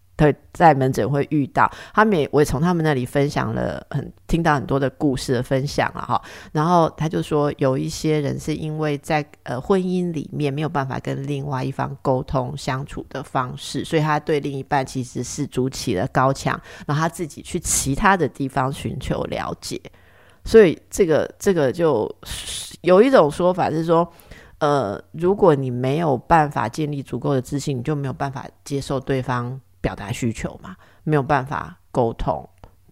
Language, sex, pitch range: Chinese, female, 130-160 Hz